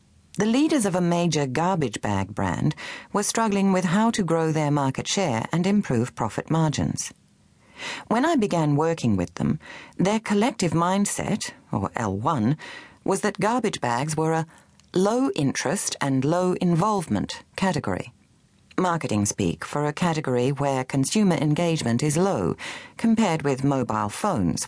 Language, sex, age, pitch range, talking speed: English, female, 40-59, 135-200 Hz, 140 wpm